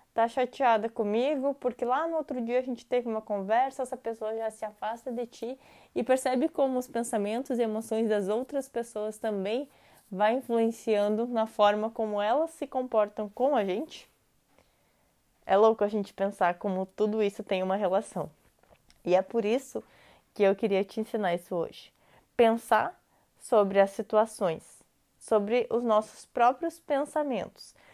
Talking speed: 155 wpm